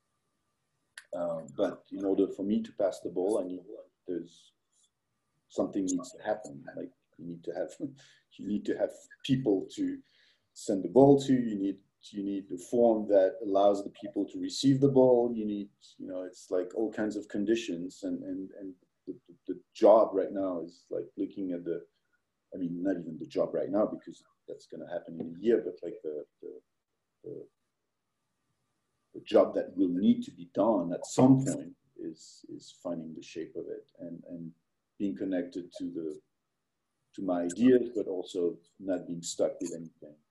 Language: English